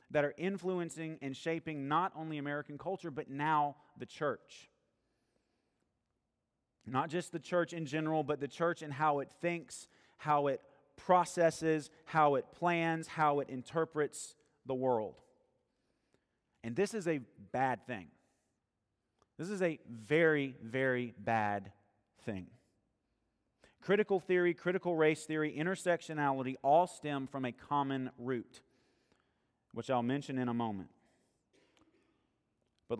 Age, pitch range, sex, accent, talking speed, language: 30-49, 125-160 Hz, male, American, 125 wpm, English